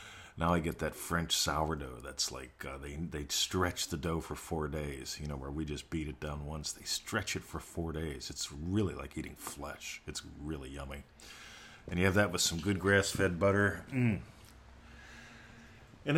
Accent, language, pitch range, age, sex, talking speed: American, English, 80-105 Hz, 40-59, male, 190 wpm